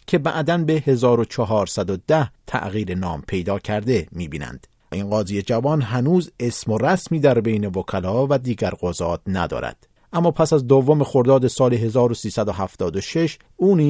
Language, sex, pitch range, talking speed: English, male, 95-145 Hz, 125 wpm